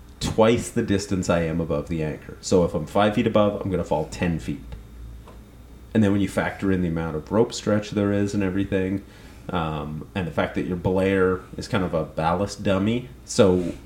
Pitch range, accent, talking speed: 80-100 Hz, American, 210 wpm